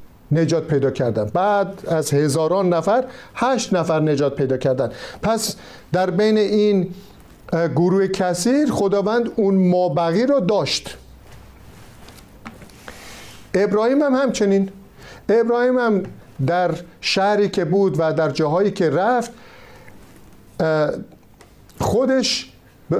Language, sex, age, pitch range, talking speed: Persian, male, 50-69, 155-215 Hz, 100 wpm